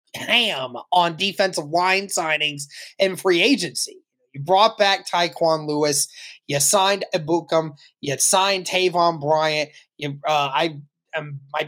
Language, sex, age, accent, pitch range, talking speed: English, male, 20-39, American, 165-215 Hz, 130 wpm